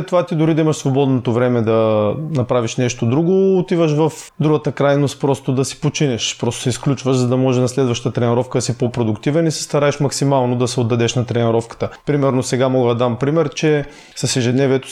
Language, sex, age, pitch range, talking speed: Bulgarian, male, 30-49, 125-150 Hz, 195 wpm